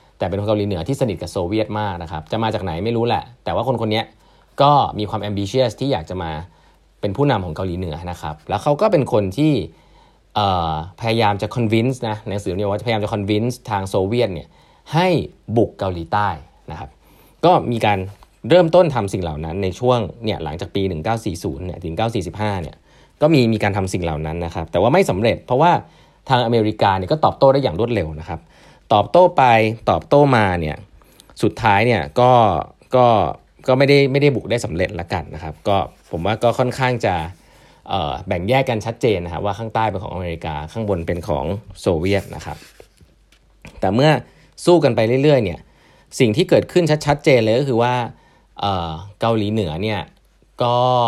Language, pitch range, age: Thai, 90-120 Hz, 20-39